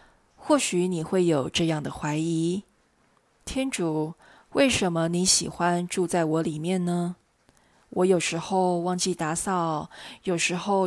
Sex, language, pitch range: female, Chinese, 165-200 Hz